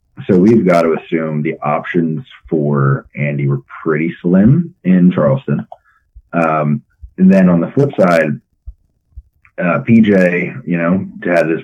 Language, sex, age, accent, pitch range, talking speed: English, male, 30-49, American, 75-90 Hz, 145 wpm